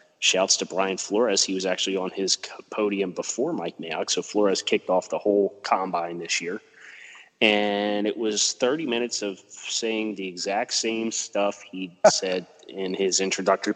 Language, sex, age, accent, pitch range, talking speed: English, male, 30-49, American, 95-110 Hz, 165 wpm